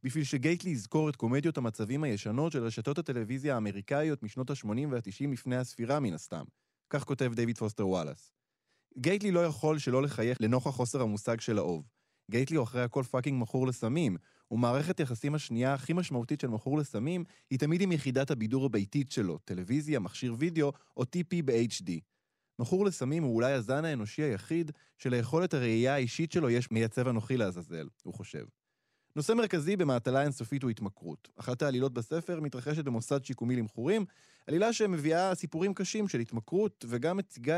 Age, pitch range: 20-39, 115-155 Hz